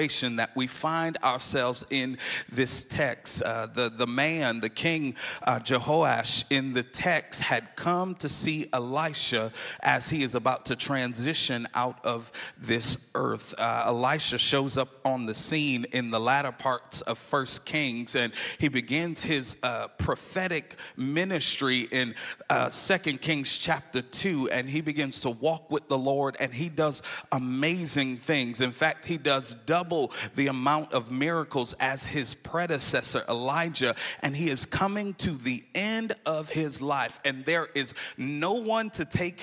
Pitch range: 120-155 Hz